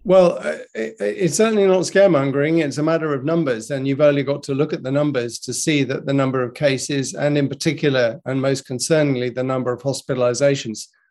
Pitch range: 135-160 Hz